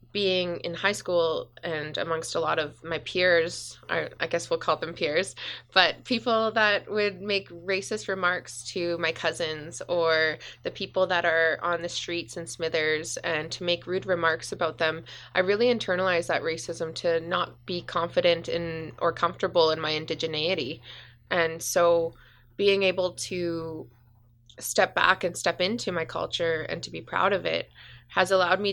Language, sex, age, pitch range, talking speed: English, female, 20-39, 160-180 Hz, 165 wpm